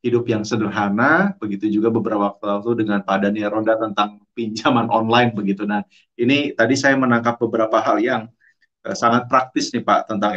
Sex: male